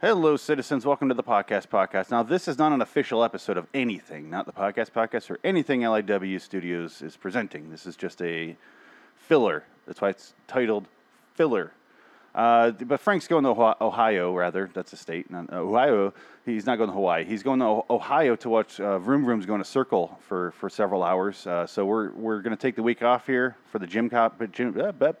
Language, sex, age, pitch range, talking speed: English, male, 30-49, 95-135 Hz, 215 wpm